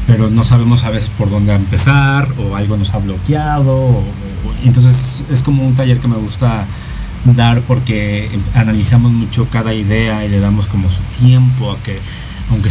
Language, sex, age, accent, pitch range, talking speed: Spanish, male, 30-49, Mexican, 105-125 Hz, 180 wpm